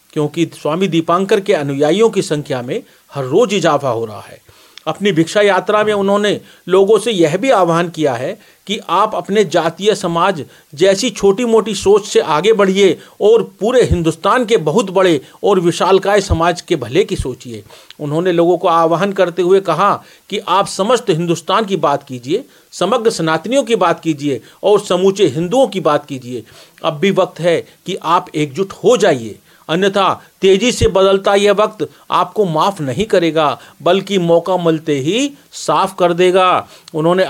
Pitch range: 160-200 Hz